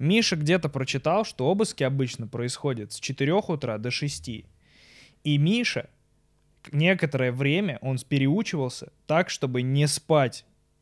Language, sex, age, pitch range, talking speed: Russian, male, 20-39, 130-170 Hz, 120 wpm